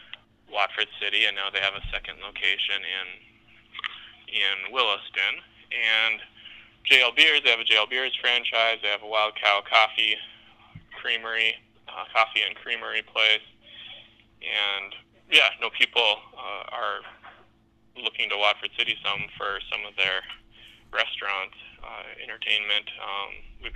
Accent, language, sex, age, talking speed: American, English, male, 20-39, 140 wpm